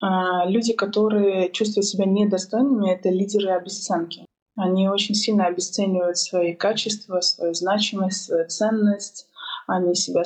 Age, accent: 20-39, native